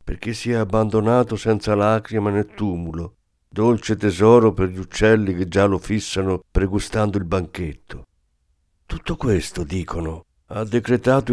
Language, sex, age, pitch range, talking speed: Italian, male, 50-69, 90-130 Hz, 130 wpm